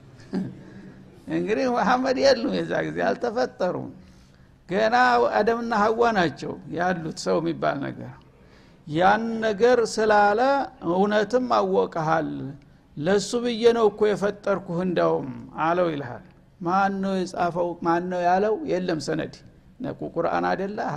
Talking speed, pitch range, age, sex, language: 100 wpm, 175-230 Hz, 60-79, male, Amharic